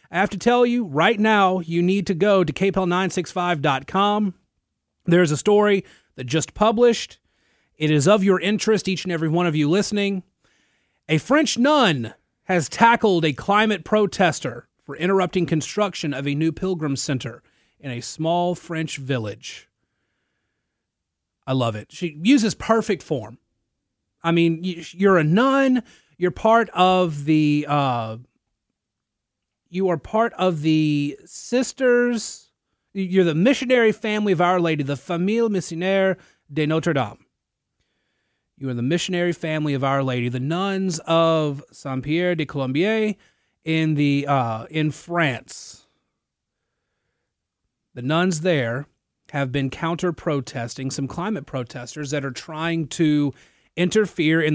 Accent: American